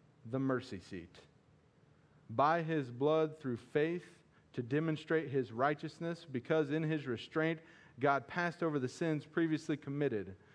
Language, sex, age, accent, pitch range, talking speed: English, male, 40-59, American, 130-160 Hz, 130 wpm